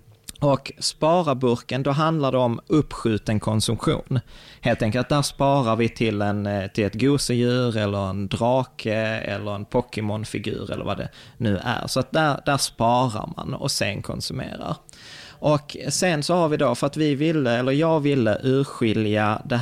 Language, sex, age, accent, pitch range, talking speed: Swedish, male, 20-39, native, 110-140 Hz, 165 wpm